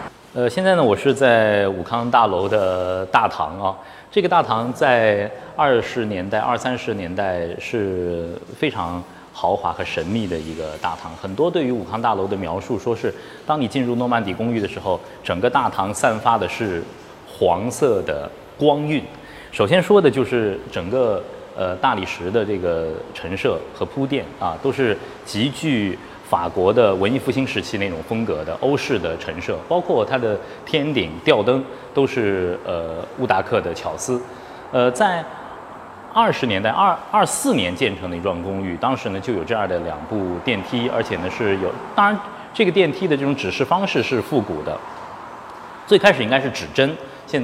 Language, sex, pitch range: Chinese, male, 95-145 Hz